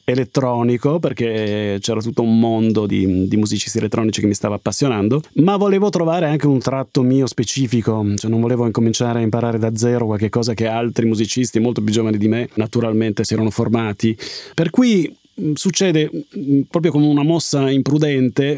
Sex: male